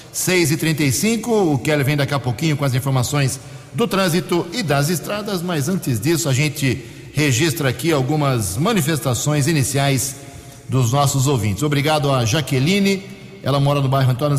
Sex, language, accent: male, Portuguese, Brazilian